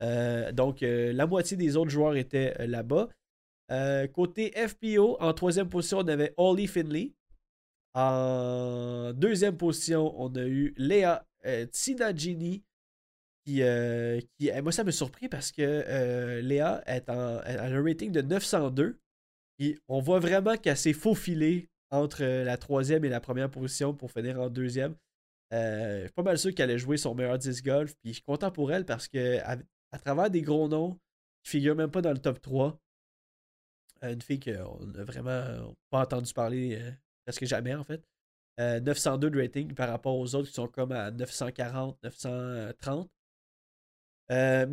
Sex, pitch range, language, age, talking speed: male, 125-160 Hz, French, 20-39, 175 wpm